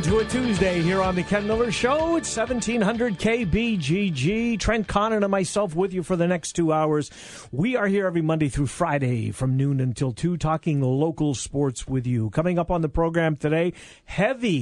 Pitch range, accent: 135-180 Hz, American